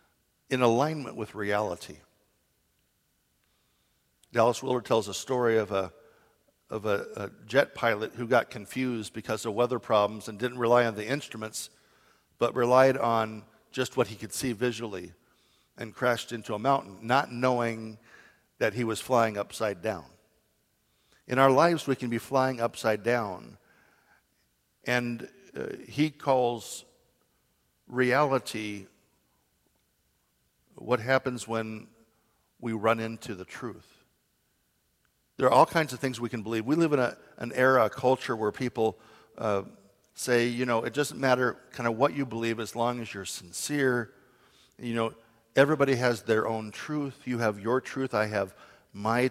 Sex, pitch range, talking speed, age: male, 110-130 Hz, 150 wpm, 60-79